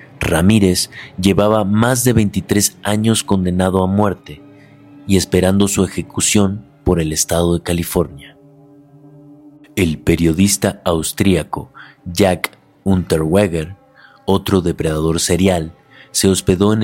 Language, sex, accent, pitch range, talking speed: Spanish, male, Mexican, 90-105 Hz, 105 wpm